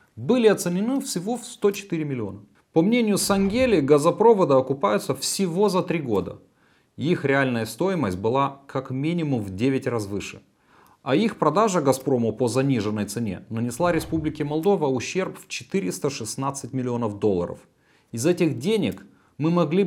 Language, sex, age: Romanian, male, 30-49